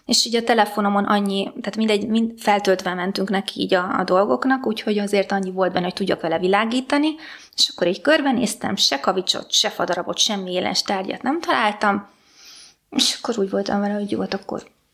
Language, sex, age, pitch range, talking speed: Hungarian, female, 20-39, 195-260 Hz, 185 wpm